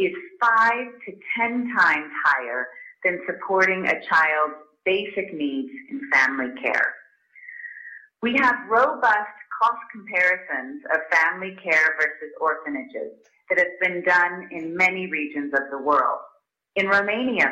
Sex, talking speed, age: female, 125 wpm, 30-49